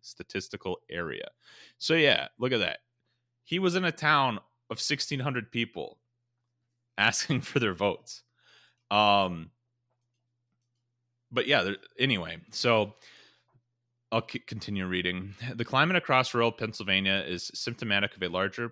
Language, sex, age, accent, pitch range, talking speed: English, male, 30-49, American, 90-120 Hz, 120 wpm